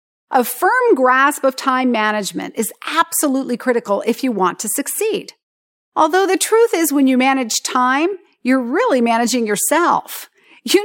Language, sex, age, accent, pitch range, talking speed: English, female, 40-59, American, 230-330 Hz, 150 wpm